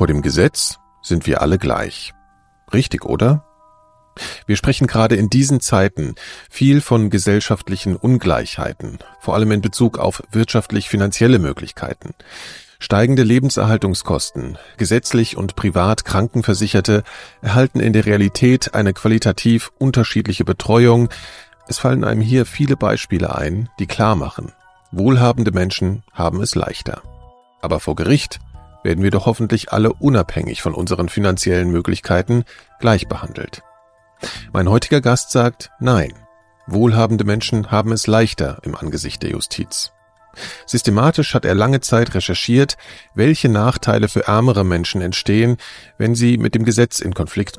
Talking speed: 130 wpm